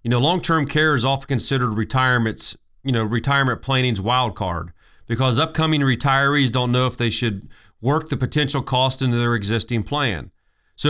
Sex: male